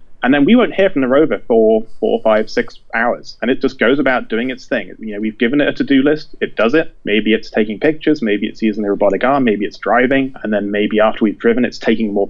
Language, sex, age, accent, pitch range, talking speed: English, male, 30-49, British, 110-135 Hz, 265 wpm